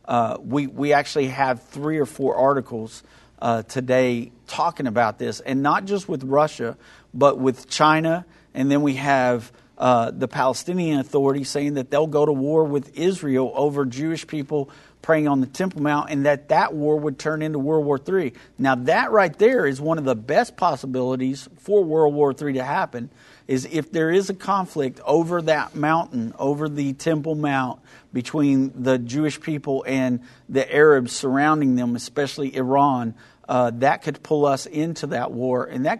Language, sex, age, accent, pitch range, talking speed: English, male, 50-69, American, 130-155 Hz, 175 wpm